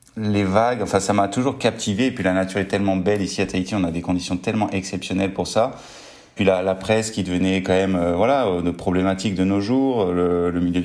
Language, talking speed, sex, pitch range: French, 240 wpm, male, 90-100 Hz